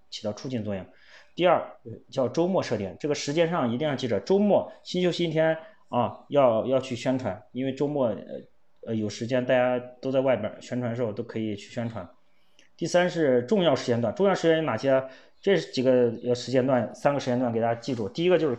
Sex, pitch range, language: male, 125-170 Hz, Chinese